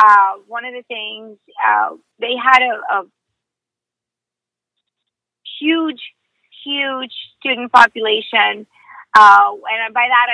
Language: English